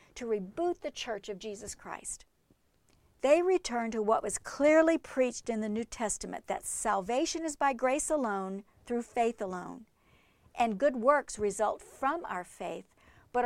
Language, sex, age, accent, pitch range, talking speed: English, female, 50-69, American, 200-275 Hz, 155 wpm